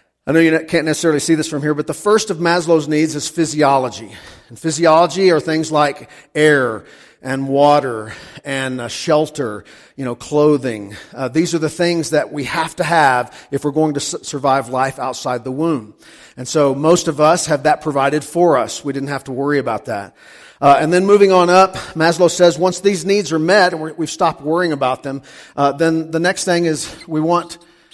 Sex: male